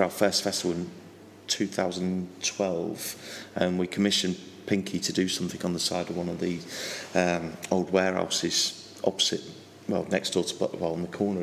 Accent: British